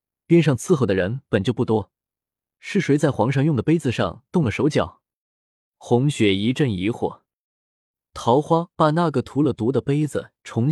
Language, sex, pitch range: Chinese, male, 110-150 Hz